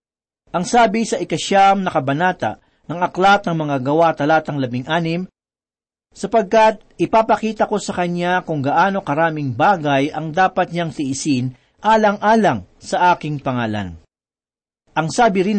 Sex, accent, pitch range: male, native, 150-195 Hz